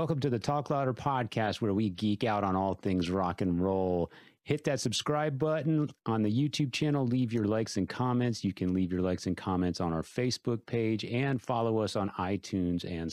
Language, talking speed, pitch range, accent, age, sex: English, 210 wpm, 100-130 Hz, American, 40-59, male